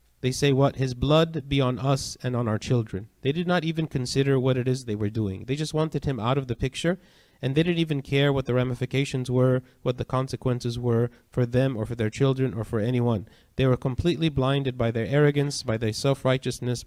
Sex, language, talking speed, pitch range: male, English, 225 wpm, 120-145 Hz